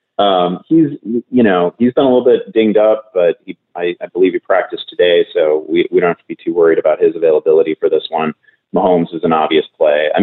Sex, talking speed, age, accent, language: male, 230 wpm, 30-49, American, English